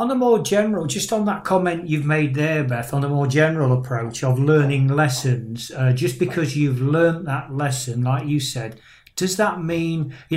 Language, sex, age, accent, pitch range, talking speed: English, male, 40-59, British, 135-175 Hz, 195 wpm